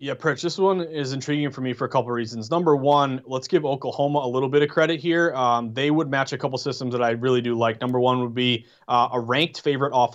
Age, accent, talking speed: 30-49, American, 260 wpm